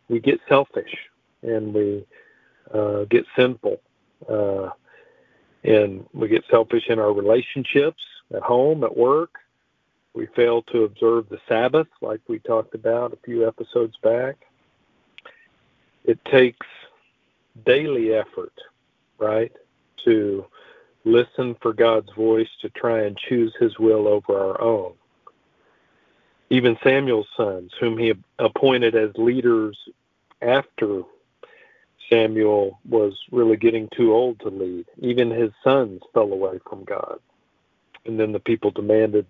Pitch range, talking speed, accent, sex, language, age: 110-130 Hz, 125 wpm, American, male, English, 50-69